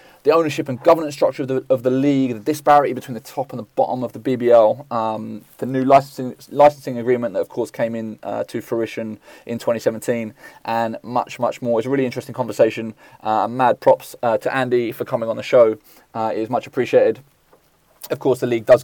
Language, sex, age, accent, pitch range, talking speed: English, male, 20-39, British, 115-135 Hz, 215 wpm